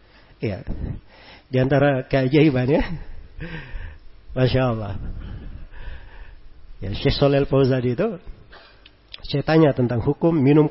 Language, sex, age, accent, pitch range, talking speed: Indonesian, male, 40-59, native, 105-140 Hz, 75 wpm